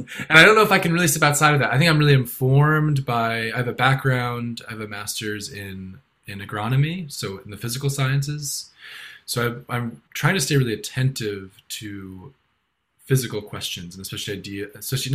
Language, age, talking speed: English, 20-39, 195 wpm